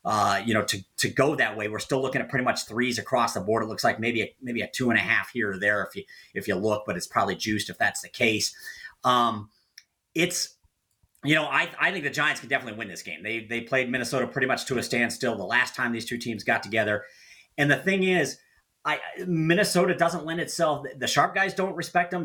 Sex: male